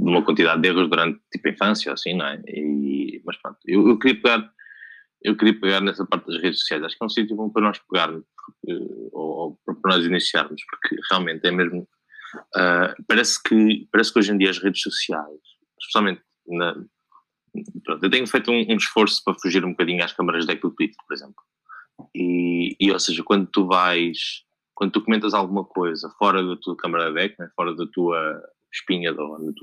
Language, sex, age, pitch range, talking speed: Portuguese, male, 20-39, 90-110 Hz, 205 wpm